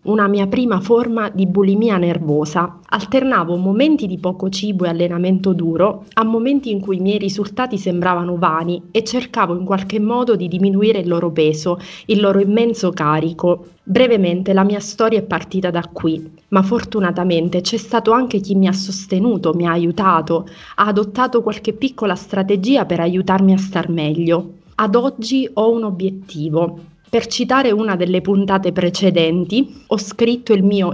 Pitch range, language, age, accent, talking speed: 175-220 Hz, Italian, 30-49, native, 160 wpm